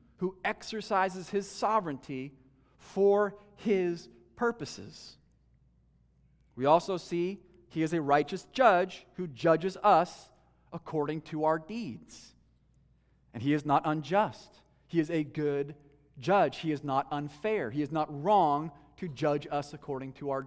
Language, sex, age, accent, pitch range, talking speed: English, male, 40-59, American, 140-185 Hz, 135 wpm